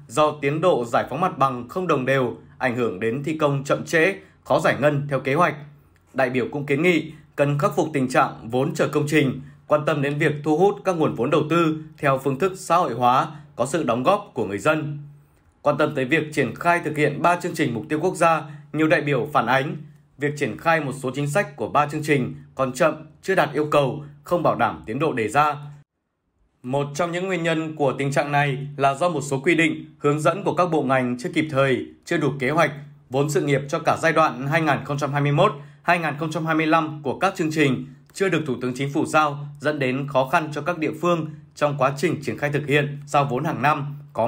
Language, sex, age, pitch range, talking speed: Vietnamese, male, 20-39, 140-160 Hz, 235 wpm